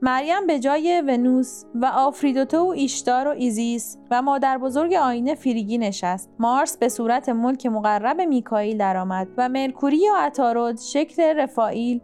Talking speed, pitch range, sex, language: 135 wpm, 230-285 Hz, female, Persian